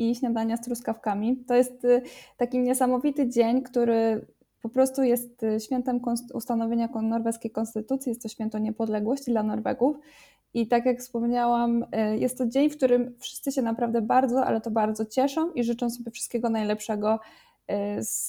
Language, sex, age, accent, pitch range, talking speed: Polish, female, 20-39, native, 220-255 Hz, 155 wpm